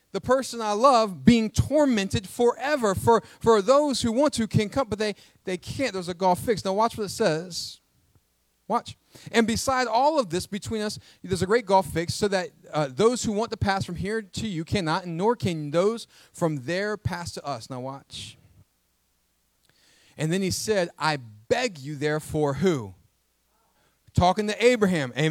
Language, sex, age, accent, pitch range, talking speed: English, male, 30-49, American, 155-230 Hz, 185 wpm